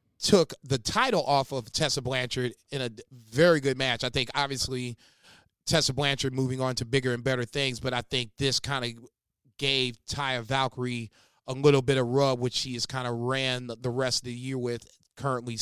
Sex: male